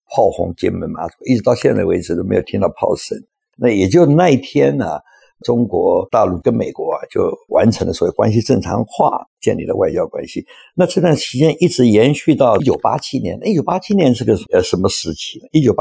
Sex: male